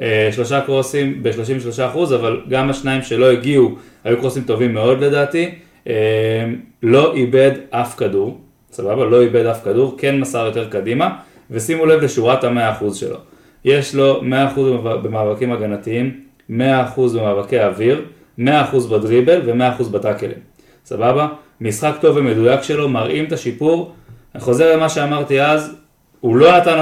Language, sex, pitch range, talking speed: Hebrew, male, 120-150 Hz, 145 wpm